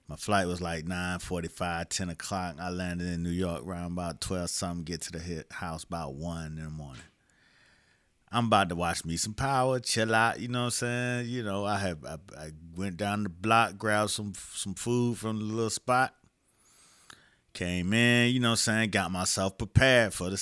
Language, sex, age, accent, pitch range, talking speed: English, male, 30-49, American, 85-110 Hz, 195 wpm